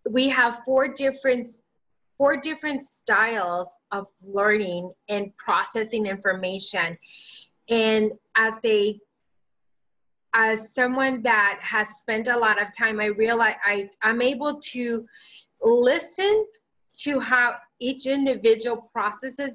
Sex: female